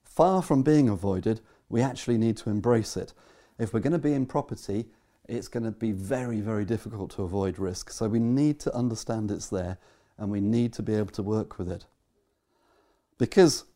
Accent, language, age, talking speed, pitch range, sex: British, English, 30-49, 195 wpm, 110-150 Hz, male